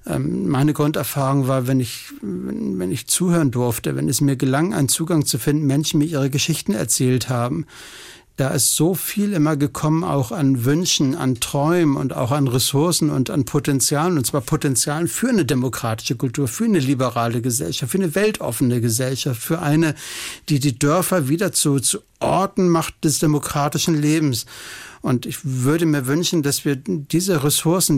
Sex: male